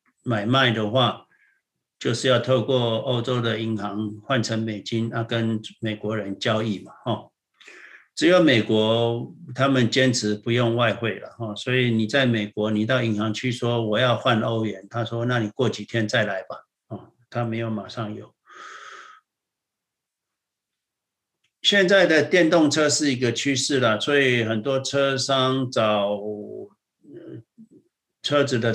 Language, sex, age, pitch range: Chinese, male, 60-79, 110-130 Hz